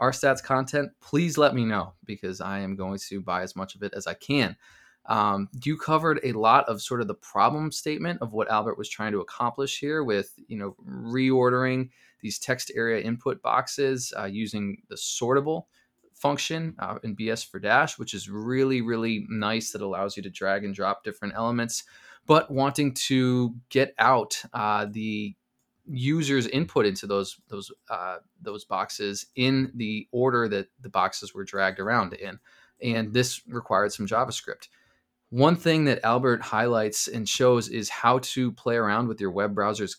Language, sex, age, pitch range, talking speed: English, male, 20-39, 105-135 Hz, 175 wpm